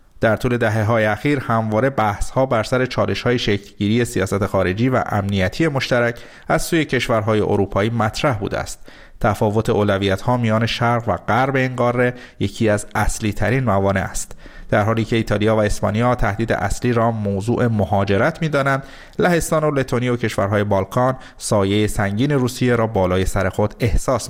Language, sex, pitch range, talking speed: Persian, male, 100-125 Hz, 155 wpm